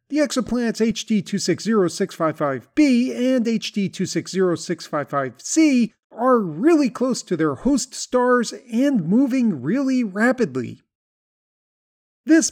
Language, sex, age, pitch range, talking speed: English, male, 40-59, 180-255 Hz, 90 wpm